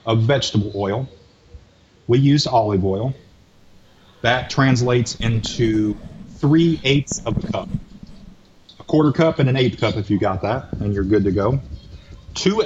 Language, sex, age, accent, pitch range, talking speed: English, male, 30-49, American, 105-140 Hz, 145 wpm